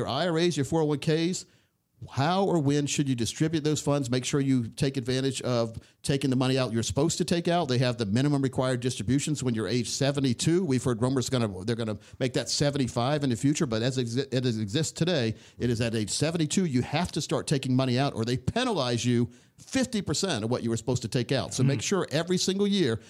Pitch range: 120-150 Hz